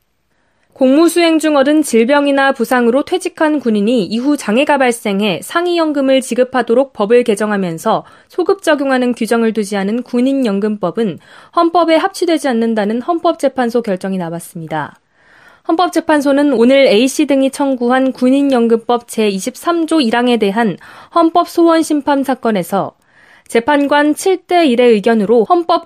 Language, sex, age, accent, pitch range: Korean, female, 20-39, native, 225-305 Hz